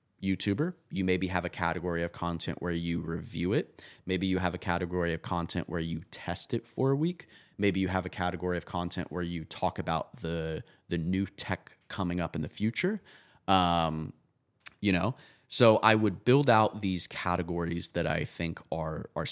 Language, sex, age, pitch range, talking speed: English, male, 30-49, 85-105 Hz, 190 wpm